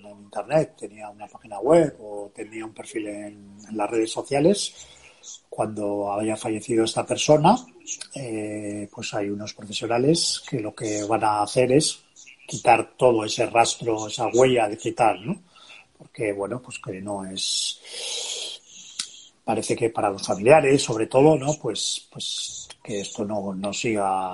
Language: Spanish